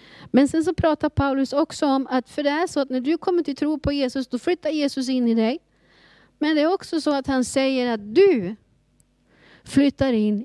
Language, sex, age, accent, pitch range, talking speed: Swedish, female, 30-49, native, 215-300 Hz, 220 wpm